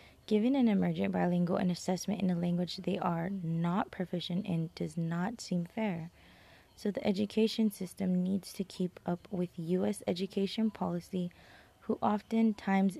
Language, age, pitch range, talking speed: English, 20-39, 170-195 Hz, 150 wpm